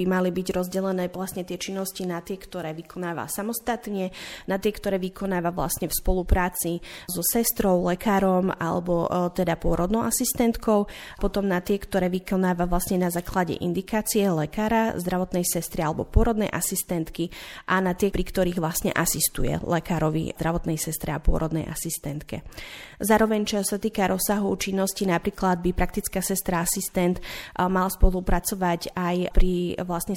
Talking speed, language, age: 140 wpm, Slovak, 30-49